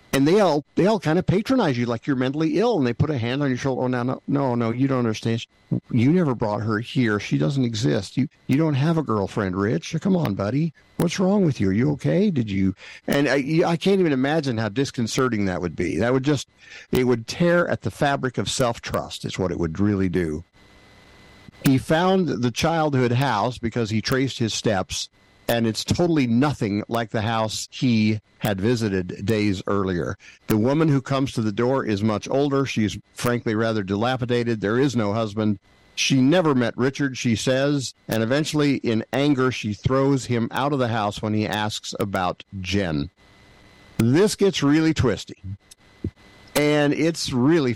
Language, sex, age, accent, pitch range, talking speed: English, male, 50-69, American, 105-140 Hz, 190 wpm